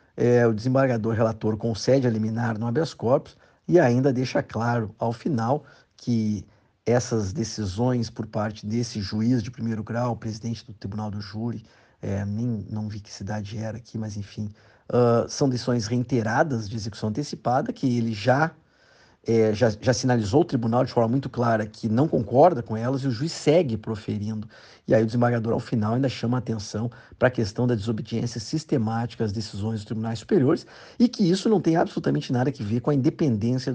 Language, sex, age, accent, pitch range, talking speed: Portuguese, male, 50-69, Brazilian, 110-130 Hz, 180 wpm